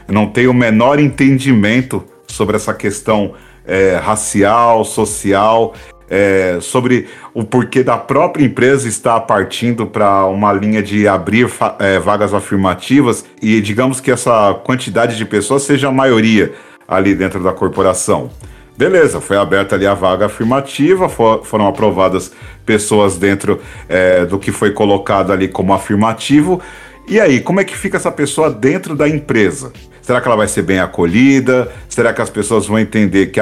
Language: Portuguese